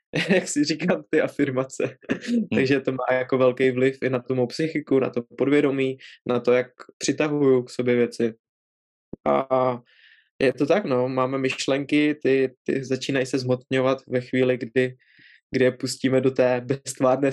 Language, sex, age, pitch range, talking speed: Czech, male, 20-39, 125-135 Hz, 155 wpm